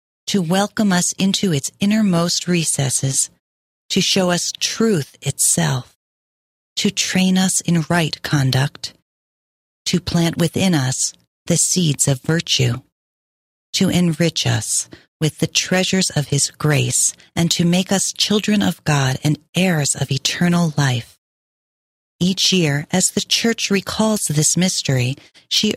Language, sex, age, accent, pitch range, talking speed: English, female, 40-59, American, 140-185 Hz, 130 wpm